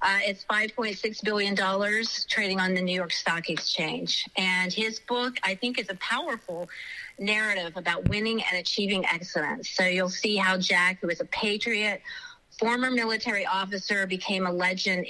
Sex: female